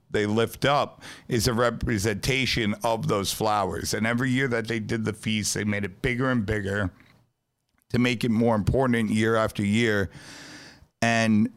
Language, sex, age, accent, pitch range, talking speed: English, male, 50-69, American, 100-120 Hz, 165 wpm